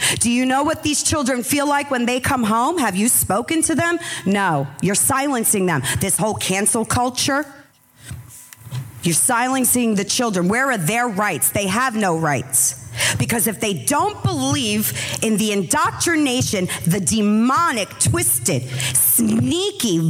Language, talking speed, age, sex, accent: Dutch, 145 wpm, 40-59, female, American